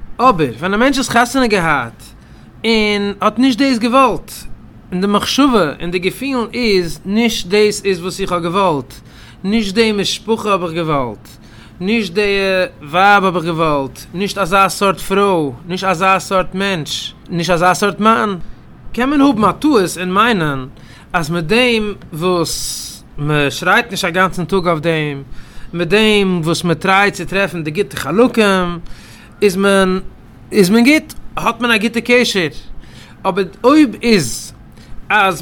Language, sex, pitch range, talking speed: English, male, 175-220 Hz, 145 wpm